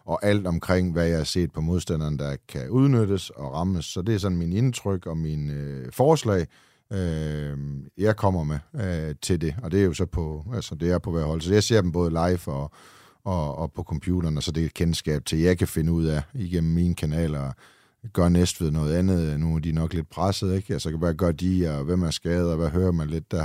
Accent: native